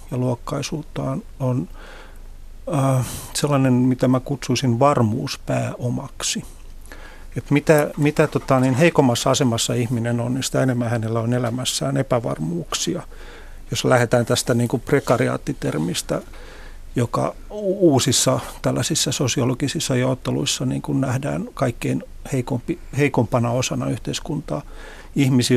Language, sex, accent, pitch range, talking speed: Finnish, male, native, 120-140 Hz, 100 wpm